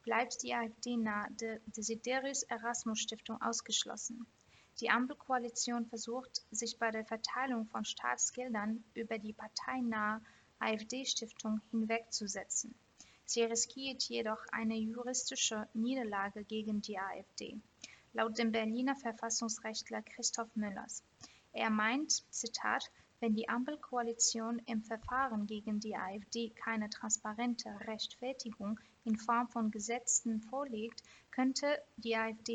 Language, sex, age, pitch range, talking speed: German, female, 20-39, 220-240 Hz, 110 wpm